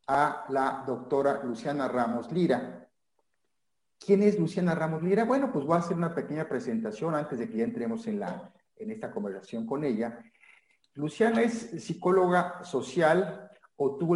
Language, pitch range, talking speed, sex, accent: Spanish, 130-185 Hz, 155 wpm, male, Mexican